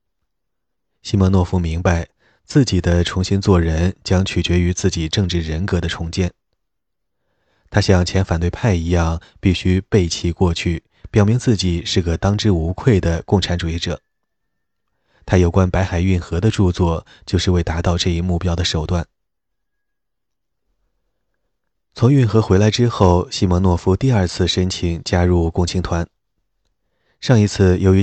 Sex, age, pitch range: male, 20-39, 85-100 Hz